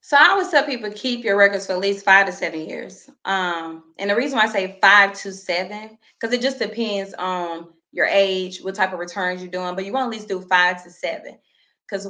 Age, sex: 20-39, female